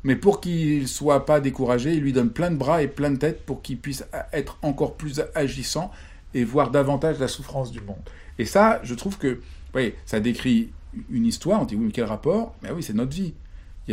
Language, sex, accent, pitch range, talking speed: French, male, French, 100-130 Hz, 240 wpm